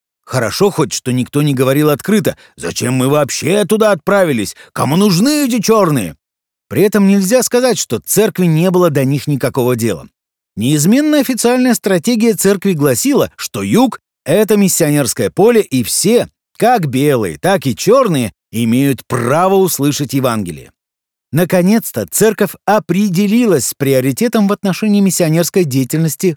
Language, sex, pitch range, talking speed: Russian, male, 135-195 Hz, 130 wpm